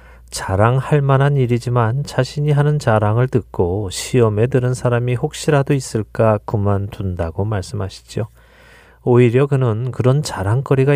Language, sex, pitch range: Korean, male, 100-130 Hz